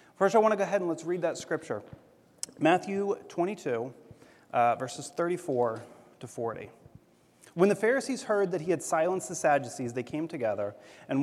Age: 30-49